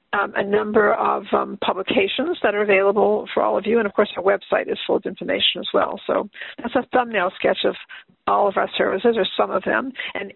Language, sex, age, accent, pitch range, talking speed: English, female, 50-69, American, 195-255 Hz, 225 wpm